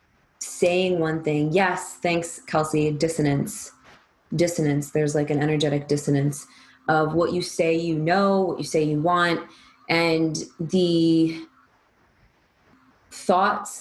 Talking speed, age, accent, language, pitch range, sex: 115 wpm, 20-39, American, English, 155-185 Hz, female